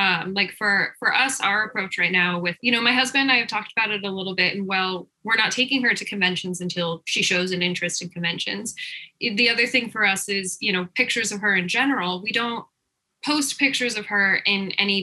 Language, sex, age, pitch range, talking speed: English, female, 10-29, 185-245 Hz, 230 wpm